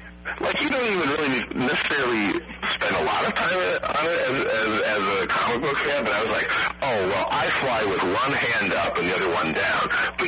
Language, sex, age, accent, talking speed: English, male, 40-59, American, 220 wpm